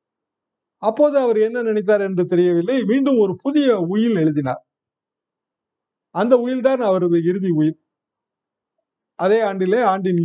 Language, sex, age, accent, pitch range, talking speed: Tamil, male, 50-69, native, 155-215 Hz, 110 wpm